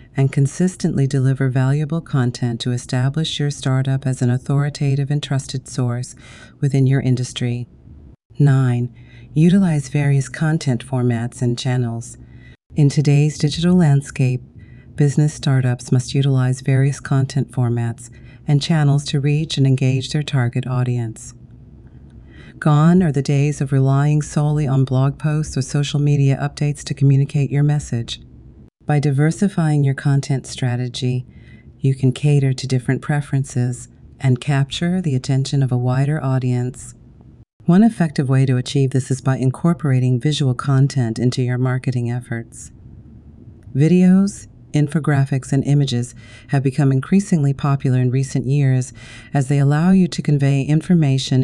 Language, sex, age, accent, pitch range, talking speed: English, female, 40-59, American, 125-145 Hz, 135 wpm